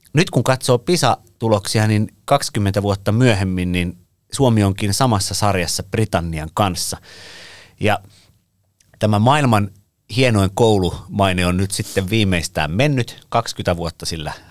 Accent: native